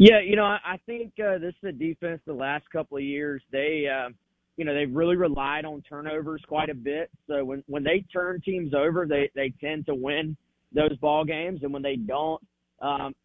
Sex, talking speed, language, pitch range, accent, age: male, 215 wpm, English, 130-155 Hz, American, 30-49